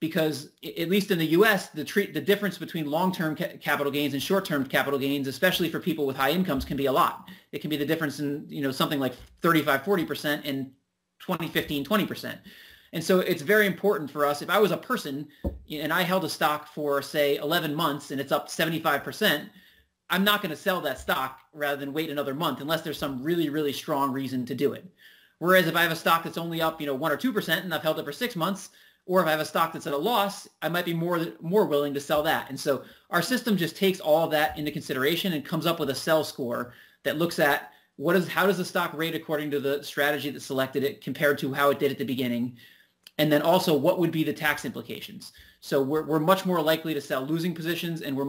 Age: 30-49